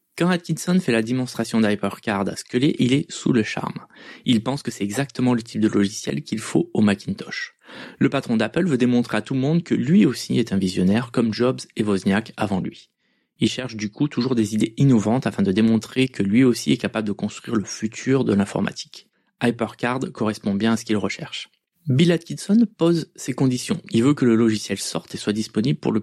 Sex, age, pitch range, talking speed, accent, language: male, 20-39, 110-140 Hz, 210 wpm, French, French